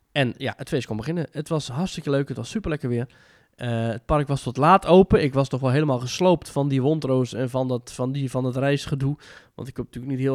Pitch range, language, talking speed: 120-150 Hz, Dutch, 250 wpm